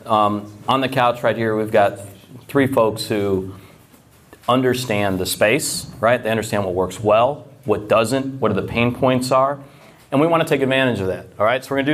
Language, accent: English, American